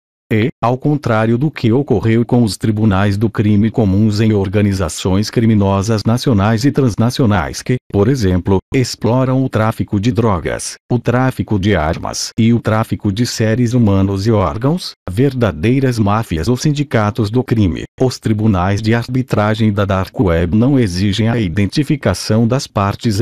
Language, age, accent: Portuguese, 40-59, Brazilian